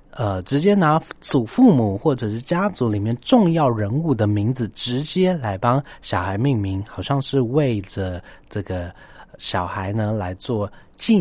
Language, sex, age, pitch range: Chinese, male, 30-49, 100-140 Hz